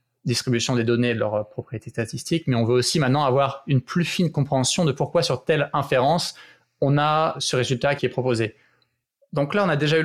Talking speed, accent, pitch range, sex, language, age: 215 wpm, French, 130-155 Hz, male, French, 20-39